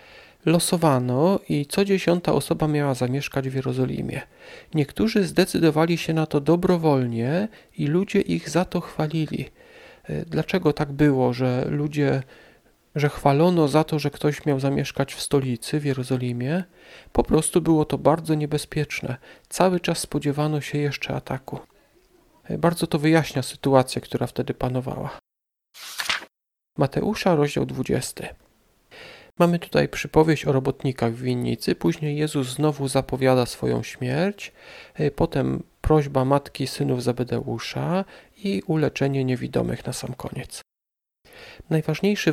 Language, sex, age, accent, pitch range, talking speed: Polish, male, 40-59, native, 130-170 Hz, 120 wpm